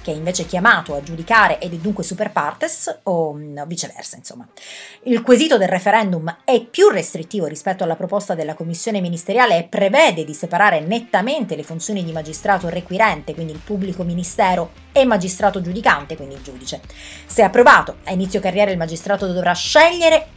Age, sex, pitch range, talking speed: 30-49, female, 175-230 Hz, 165 wpm